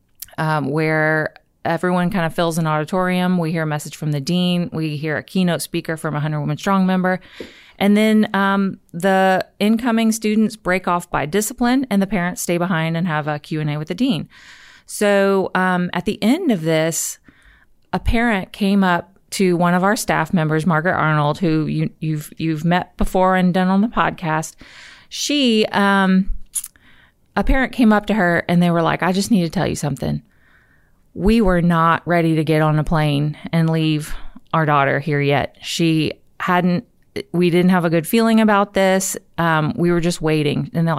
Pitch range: 160-200 Hz